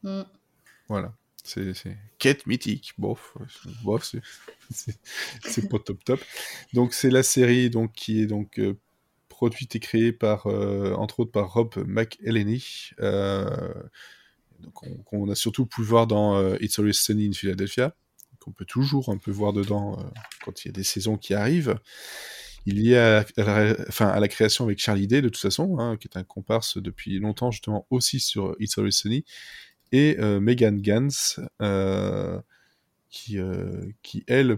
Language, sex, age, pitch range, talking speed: French, male, 20-39, 100-120 Hz, 175 wpm